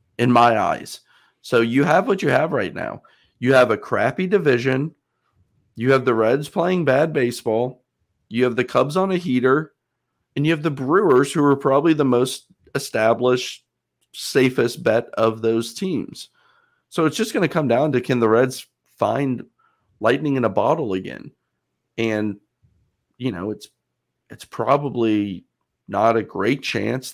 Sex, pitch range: male, 115-145 Hz